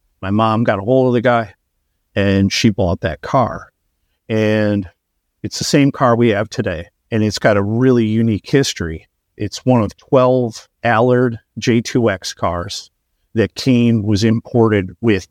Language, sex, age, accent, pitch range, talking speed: English, male, 50-69, American, 100-125 Hz, 155 wpm